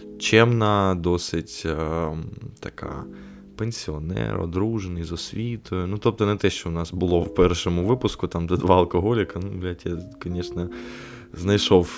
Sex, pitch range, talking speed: male, 90-110 Hz, 140 wpm